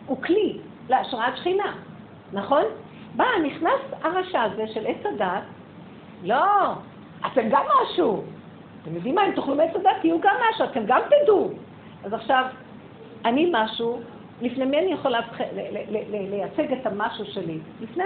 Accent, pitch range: native, 200-280 Hz